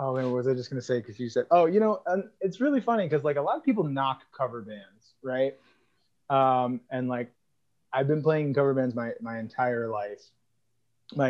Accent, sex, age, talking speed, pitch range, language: American, male, 20-39, 225 wpm, 120-155 Hz, English